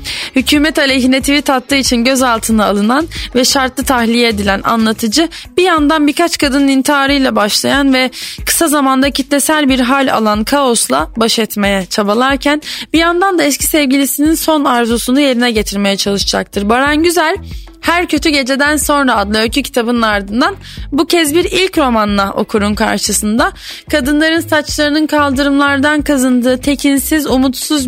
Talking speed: 135 wpm